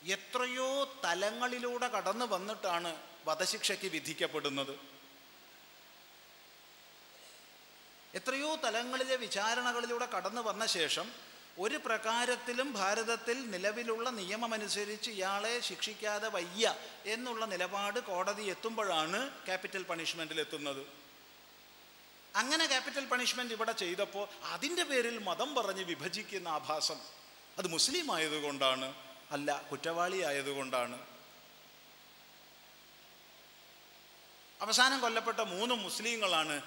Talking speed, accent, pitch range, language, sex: 75 wpm, native, 160-235 Hz, Malayalam, male